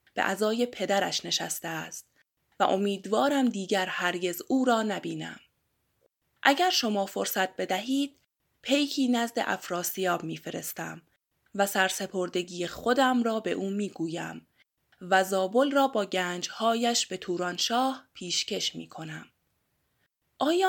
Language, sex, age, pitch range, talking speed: Persian, female, 20-39, 185-235 Hz, 115 wpm